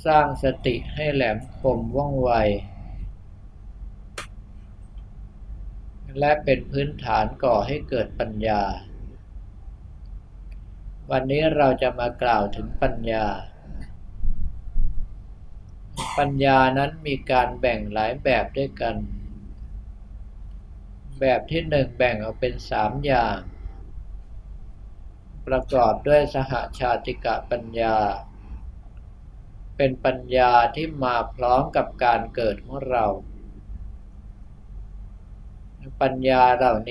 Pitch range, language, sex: 95-130 Hz, Thai, male